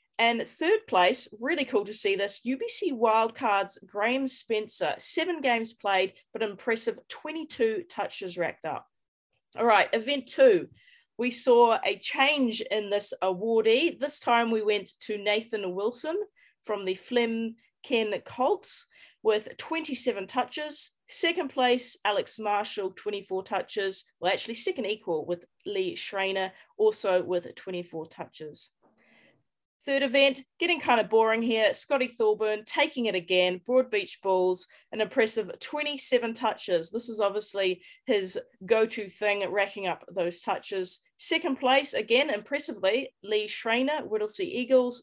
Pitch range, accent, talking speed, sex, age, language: 205-275 Hz, Australian, 130 wpm, female, 30-49, English